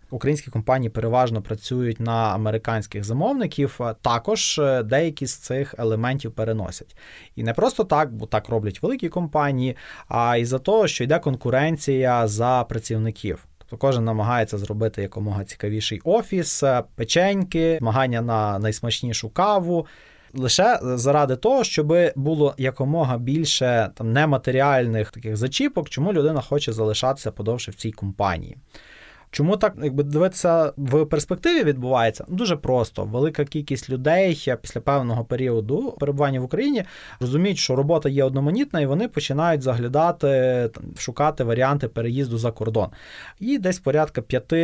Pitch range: 115-150 Hz